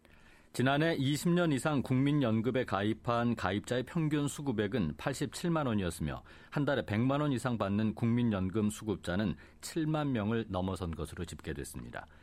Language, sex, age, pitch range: Korean, male, 40-59, 90-130 Hz